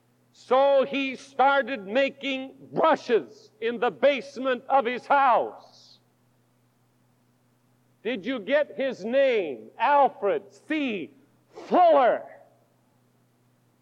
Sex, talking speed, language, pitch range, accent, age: male, 85 wpm, English, 260-340 Hz, American, 60-79